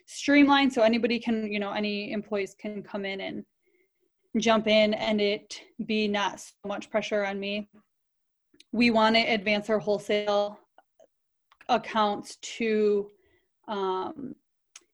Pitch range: 205-240 Hz